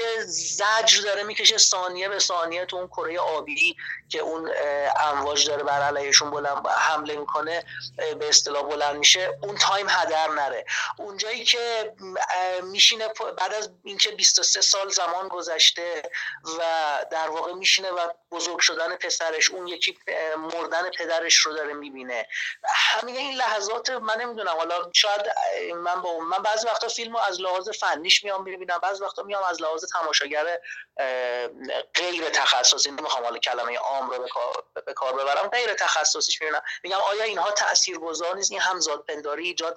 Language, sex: Persian, male